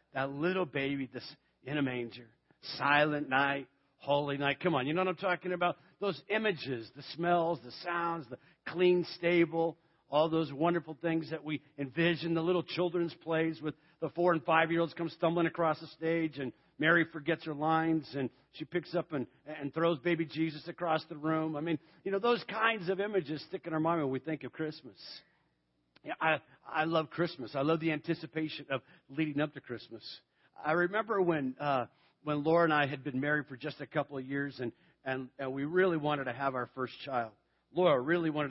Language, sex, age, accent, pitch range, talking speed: English, male, 50-69, American, 140-170 Hz, 200 wpm